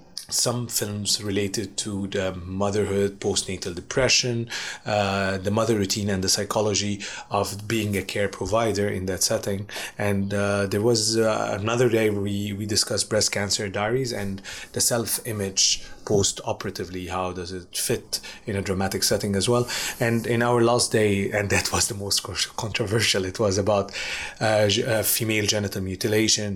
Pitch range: 100-115 Hz